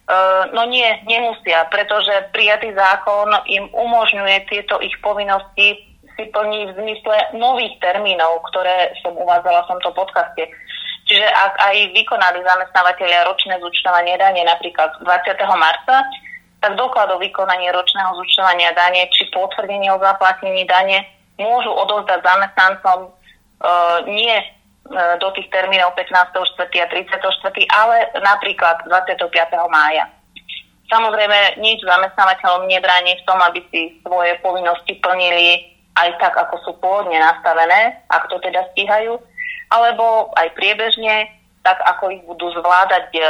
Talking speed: 130 wpm